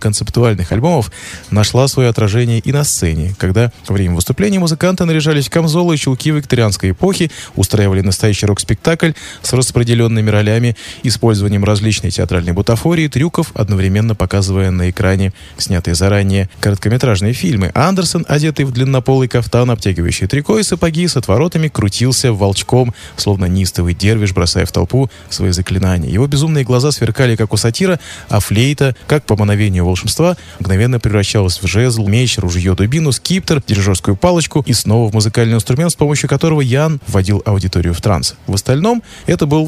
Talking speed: 150 wpm